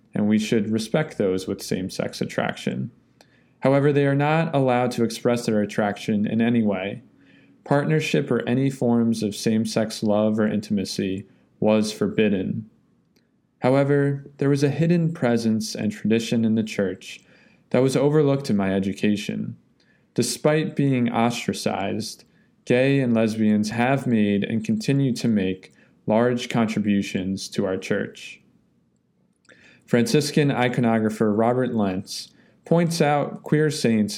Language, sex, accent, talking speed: English, male, American, 130 wpm